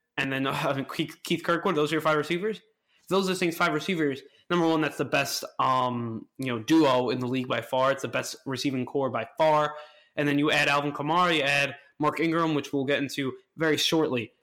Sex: male